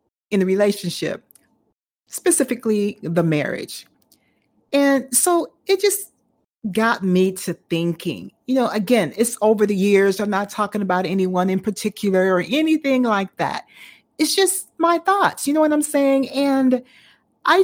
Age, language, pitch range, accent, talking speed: 40-59, English, 180-255 Hz, American, 145 wpm